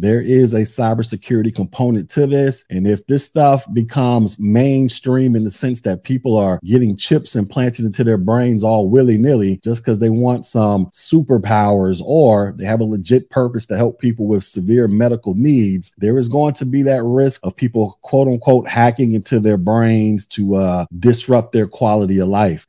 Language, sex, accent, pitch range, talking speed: English, male, American, 100-120 Hz, 180 wpm